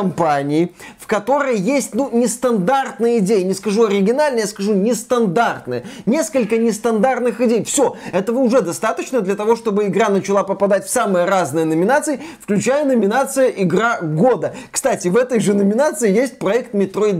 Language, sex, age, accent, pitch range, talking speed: Russian, male, 20-39, native, 185-250 Hz, 145 wpm